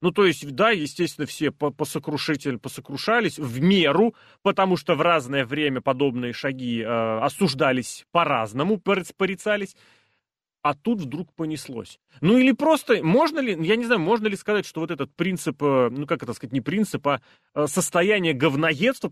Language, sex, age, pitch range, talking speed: Russian, male, 30-49, 135-195 Hz, 150 wpm